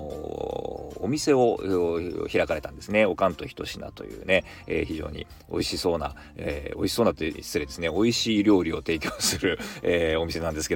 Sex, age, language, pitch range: male, 40-59, Japanese, 85-115 Hz